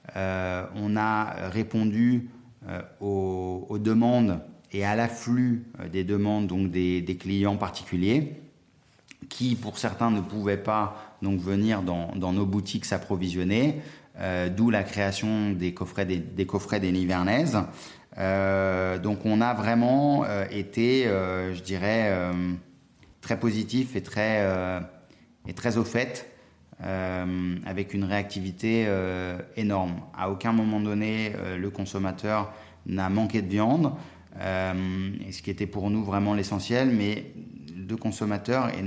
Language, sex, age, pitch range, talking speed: French, male, 30-49, 95-110 Hz, 140 wpm